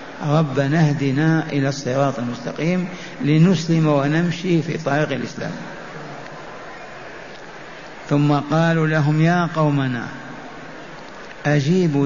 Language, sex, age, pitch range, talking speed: Arabic, male, 60-79, 150-175 Hz, 80 wpm